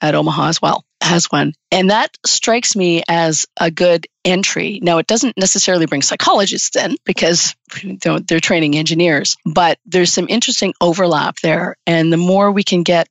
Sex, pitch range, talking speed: female, 160-190 Hz, 170 wpm